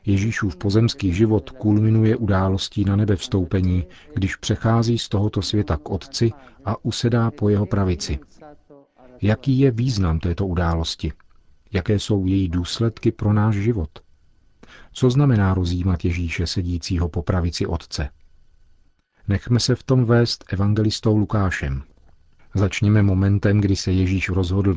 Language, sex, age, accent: Czech, male, 40-59, native